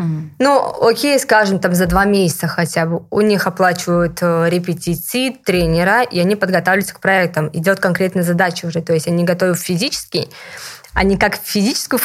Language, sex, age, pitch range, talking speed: Russian, female, 20-39, 175-215 Hz, 155 wpm